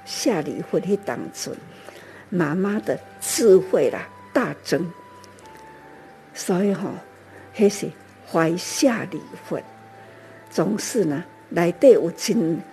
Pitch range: 170-245 Hz